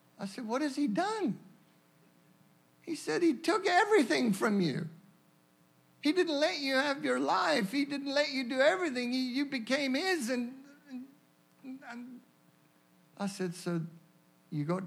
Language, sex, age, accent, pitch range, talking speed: English, male, 60-79, American, 150-235 Hz, 135 wpm